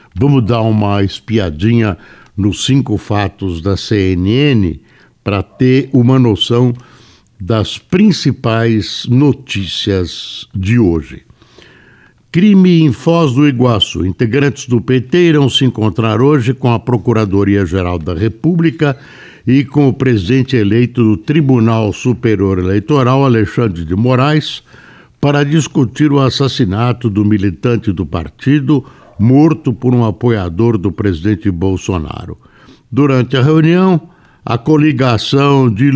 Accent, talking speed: Brazilian, 115 wpm